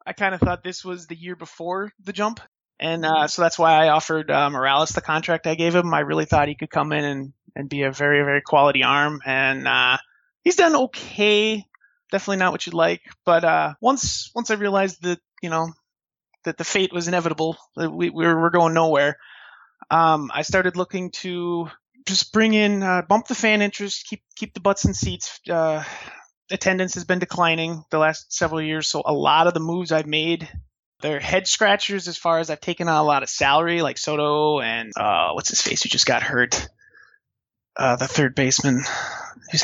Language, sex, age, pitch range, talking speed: English, male, 30-49, 150-185 Hz, 205 wpm